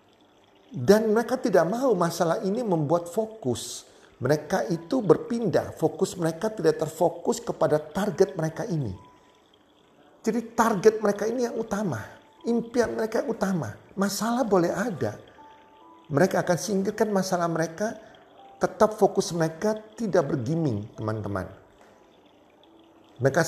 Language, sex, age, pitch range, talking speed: Indonesian, male, 40-59, 130-215 Hz, 110 wpm